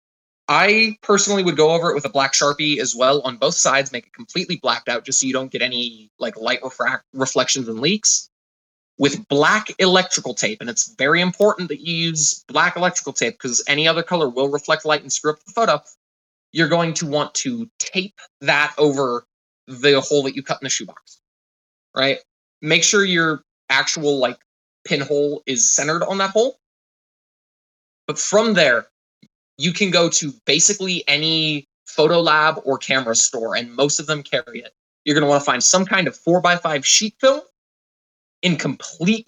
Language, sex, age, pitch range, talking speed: English, male, 20-39, 135-180 Hz, 185 wpm